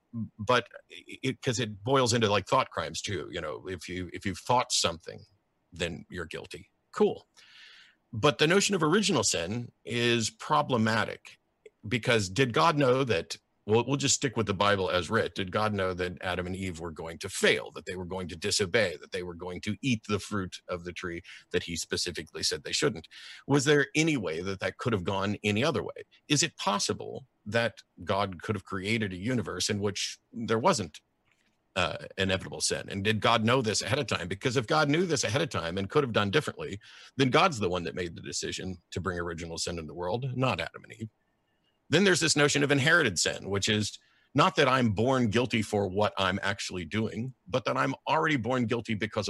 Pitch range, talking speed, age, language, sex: 95-130 Hz, 210 wpm, 50-69, English, male